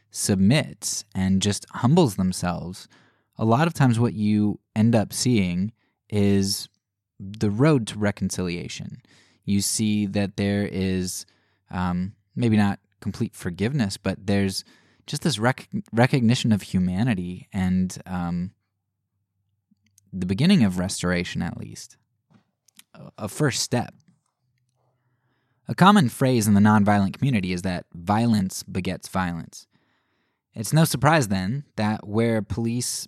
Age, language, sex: 20-39, English, male